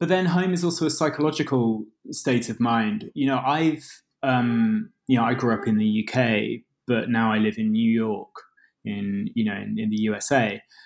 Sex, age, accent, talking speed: male, 20-39, British, 200 wpm